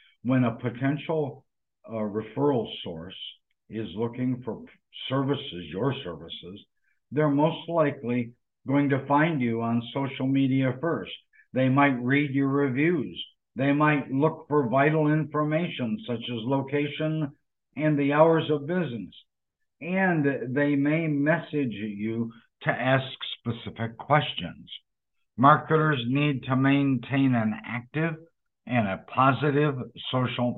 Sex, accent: male, American